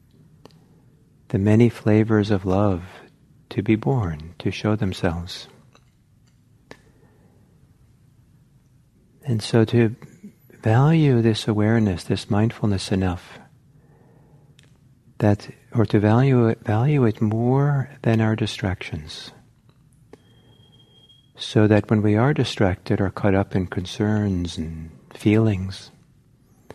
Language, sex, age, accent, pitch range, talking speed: English, male, 50-69, American, 105-130 Hz, 100 wpm